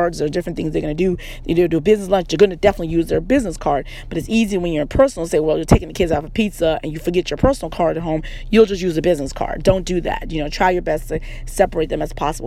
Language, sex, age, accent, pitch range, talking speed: English, female, 40-59, American, 155-195 Hz, 300 wpm